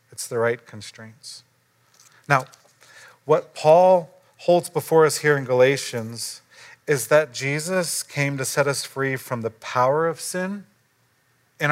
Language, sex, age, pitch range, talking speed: English, male, 40-59, 130-170 Hz, 140 wpm